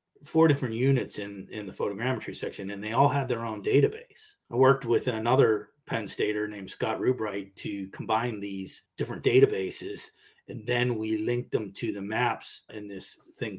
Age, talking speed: 30-49, 175 wpm